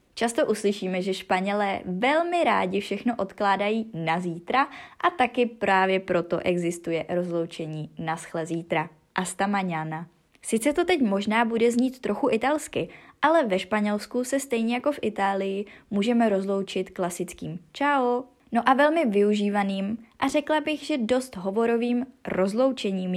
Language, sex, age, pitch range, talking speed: Czech, female, 20-39, 180-240 Hz, 130 wpm